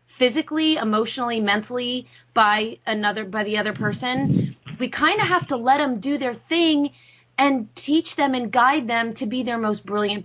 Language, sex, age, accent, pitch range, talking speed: English, female, 30-49, American, 185-245 Hz, 175 wpm